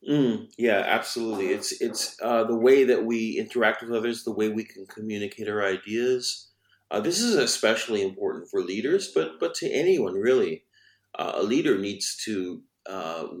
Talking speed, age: 170 wpm, 40-59